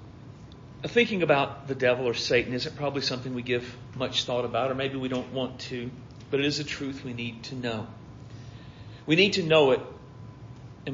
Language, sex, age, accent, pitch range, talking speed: English, male, 40-59, American, 125-140 Hz, 190 wpm